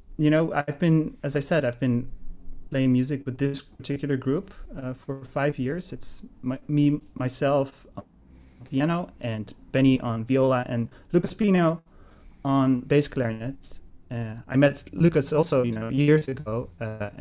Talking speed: 155 wpm